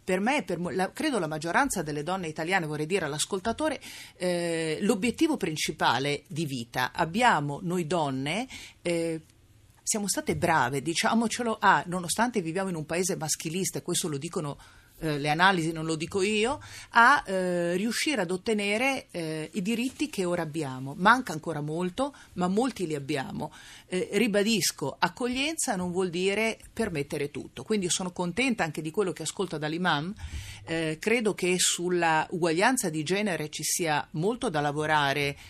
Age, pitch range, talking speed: 40-59, 155-205 Hz, 155 wpm